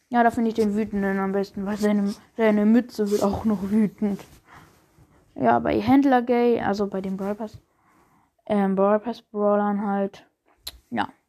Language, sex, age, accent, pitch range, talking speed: German, female, 10-29, German, 210-260 Hz, 155 wpm